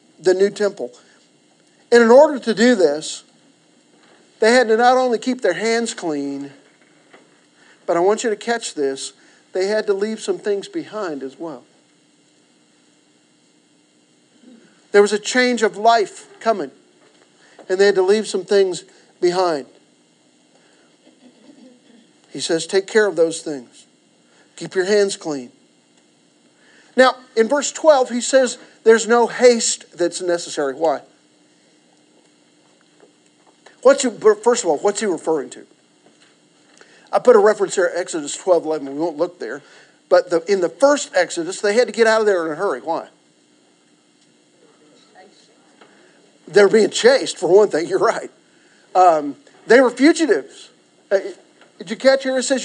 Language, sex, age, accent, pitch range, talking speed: English, male, 50-69, American, 155-250 Hz, 145 wpm